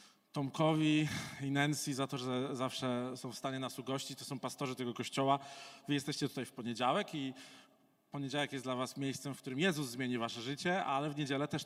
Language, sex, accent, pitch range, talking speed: Polish, male, native, 125-150 Hz, 195 wpm